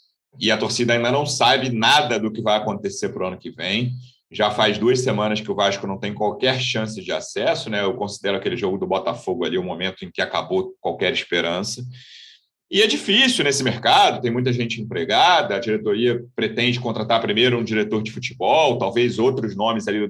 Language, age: Portuguese, 30-49